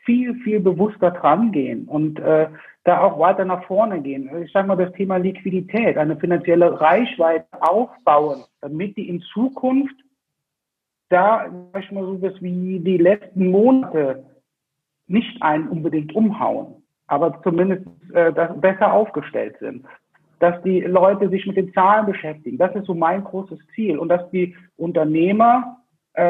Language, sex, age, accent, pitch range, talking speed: German, male, 60-79, German, 165-195 Hz, 145 wpm